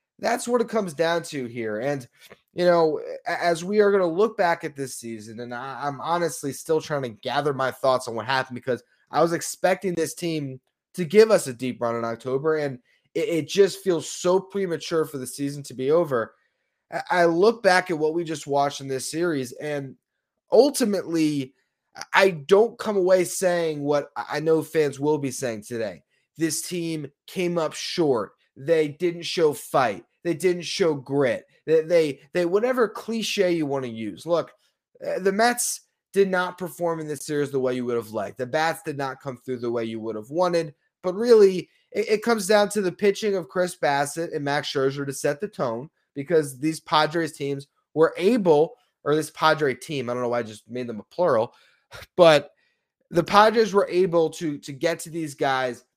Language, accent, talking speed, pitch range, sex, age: English, American, 195 wpm, 140-185 Hz, male, 20-39